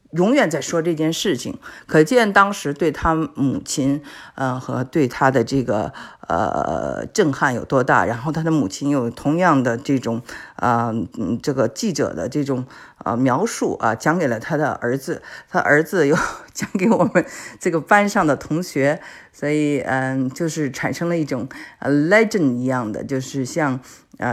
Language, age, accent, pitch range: Chinese, 50-69, native, 135-170 Hz